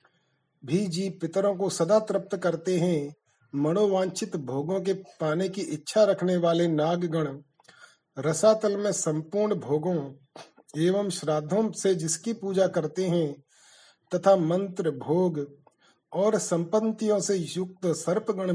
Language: Hindi